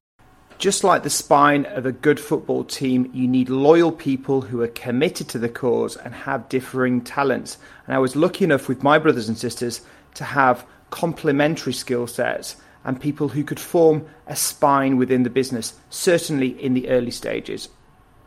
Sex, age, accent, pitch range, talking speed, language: male, 30-49, British, 125-150 Hz, 175 wpm, English